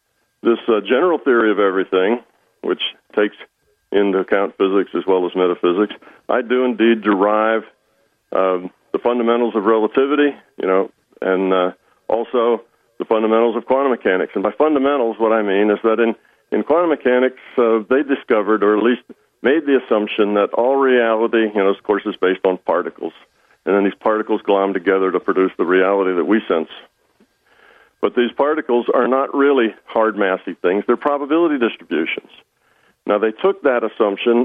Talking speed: 165 wpm